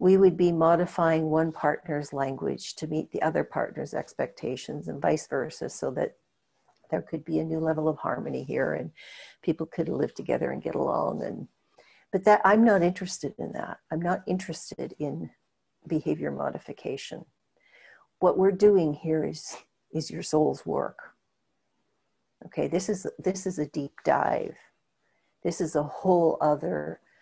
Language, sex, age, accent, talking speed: English, female, 60-79, American, 155 wpm